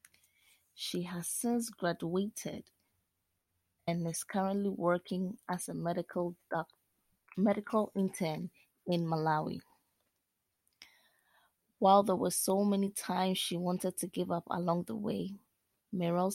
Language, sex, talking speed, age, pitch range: English, female, 115 wpm, 20-39, 170-205 Hz